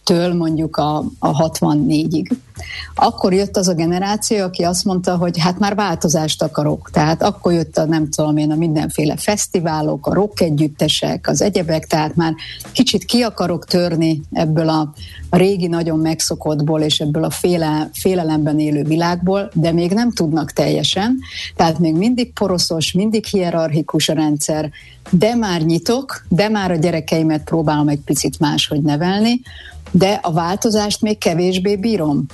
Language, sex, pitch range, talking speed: Hungarian, female, 155-200 Hz, 150 wpm